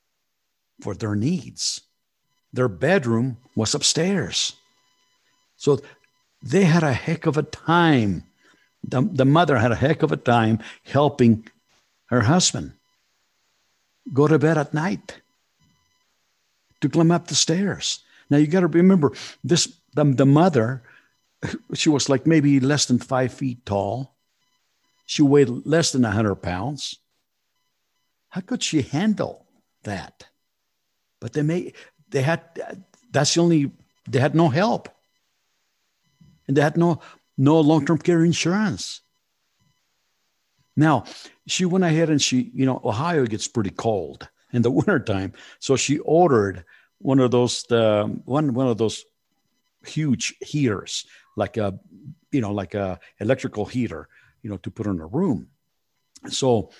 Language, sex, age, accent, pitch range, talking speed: English, male, 60-79, American, 115-160 Hz, 135 wpm